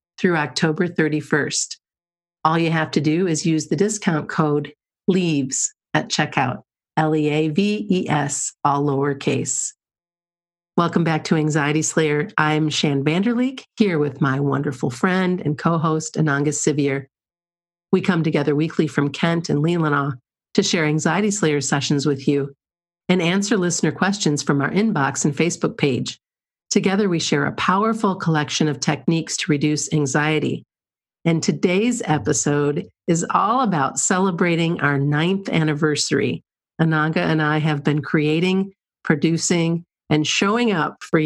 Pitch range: 150-185 Hz